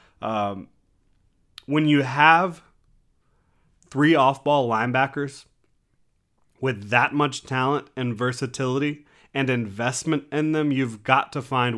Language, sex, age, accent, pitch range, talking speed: English, male, 30-49, American, 115-135 Hz, 105 wpm